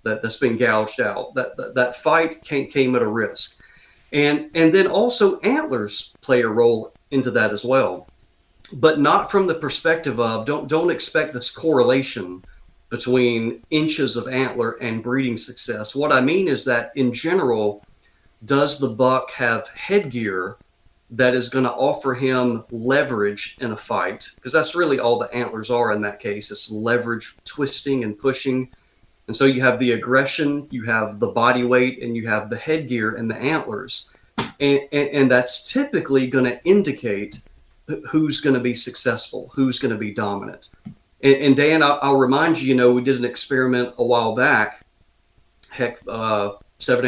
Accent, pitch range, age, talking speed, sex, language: American, 115-140 Hz, 40-59, 175 wpm, male, English